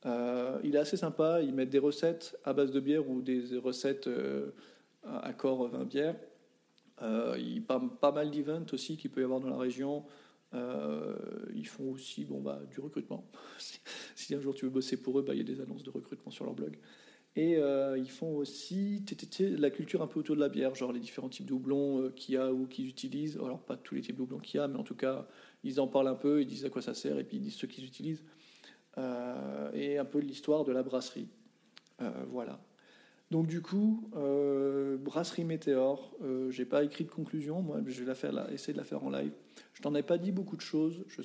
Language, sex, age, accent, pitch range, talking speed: French, male, 40-59, French, 130-165 Hz, 235 wpm